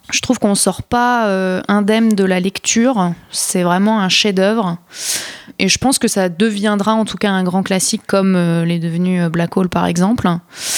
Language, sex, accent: French, female, French